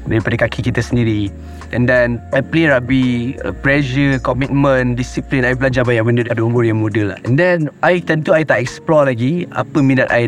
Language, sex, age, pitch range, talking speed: Malay, male, 20-39, 110-145 Hz, 185 wpm